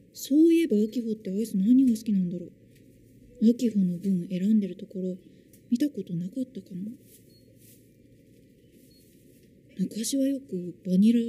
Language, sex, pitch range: Japanese, female, 195-295 Hz